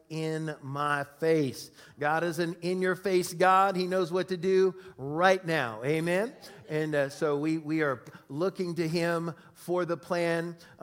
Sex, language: male, English